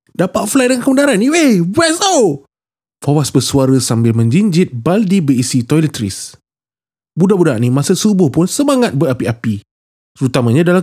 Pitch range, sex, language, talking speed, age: 130-185 Hz, male, Malay, 135 wpm, 20-39